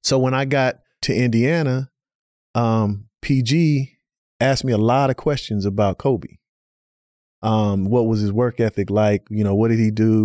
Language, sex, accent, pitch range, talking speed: English, male, American, 105-125 Hz, 170 wpm